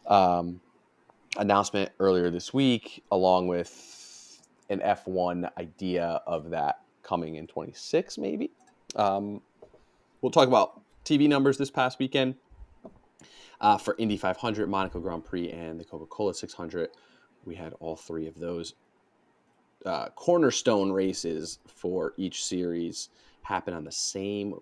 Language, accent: English, American